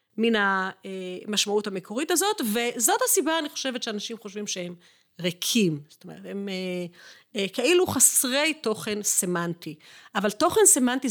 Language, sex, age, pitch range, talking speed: Hebrew, female, 40-59, 195-265 Hz, 120 wpm